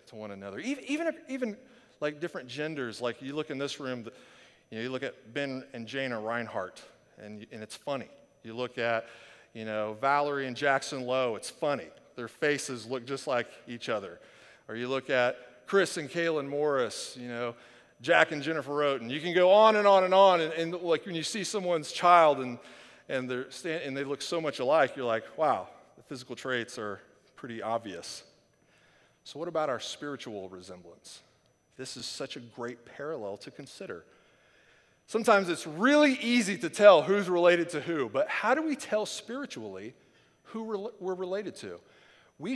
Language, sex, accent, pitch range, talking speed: English, male, American, 125-185 Hz, 185 wpm